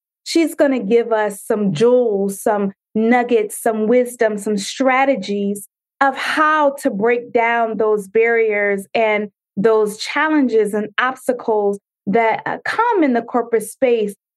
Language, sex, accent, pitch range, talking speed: English, female, American, 220-295 Hz, 130 wpm